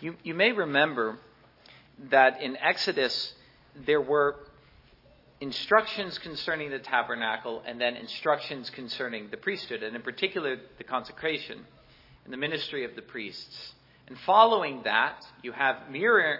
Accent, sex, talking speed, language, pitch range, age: American, male, 130 wpm, English, 135-170 Hz, 40-59